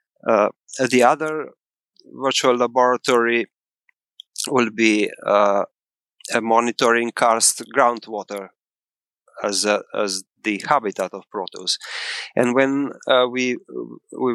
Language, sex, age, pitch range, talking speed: English, male, 30-49, 105-125 Hz, 100 wpm